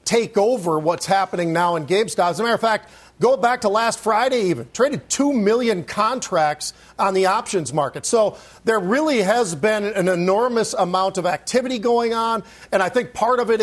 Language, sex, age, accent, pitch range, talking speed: English, male, 40-59, American, 190-230 Hz, 195 wpm